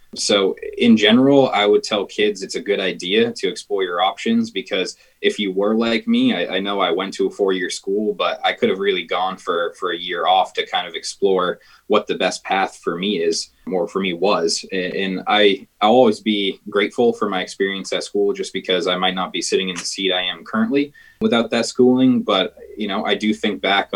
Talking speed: 230 wpm